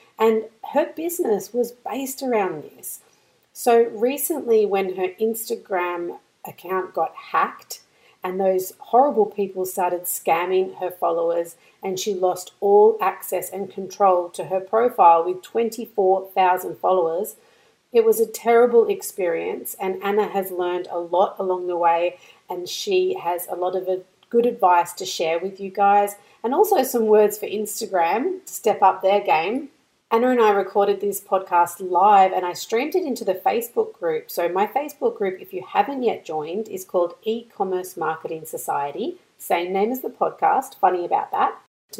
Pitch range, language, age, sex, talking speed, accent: 185-265 Hz, English, 40-59, female, 160 wpm, Australian